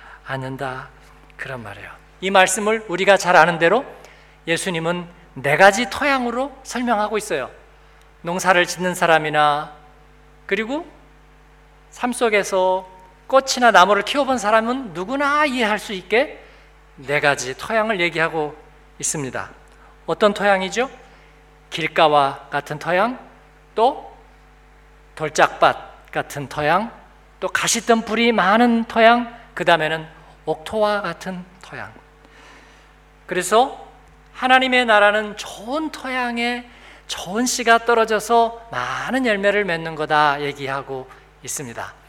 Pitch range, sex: 165-235 Hz, male